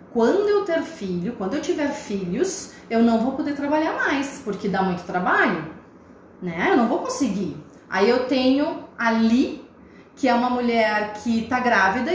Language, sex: Portuguese, female